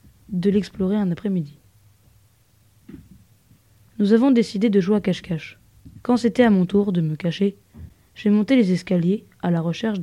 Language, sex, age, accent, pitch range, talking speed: French, female, 20-39, French, 165-205 Hz, 155 wpm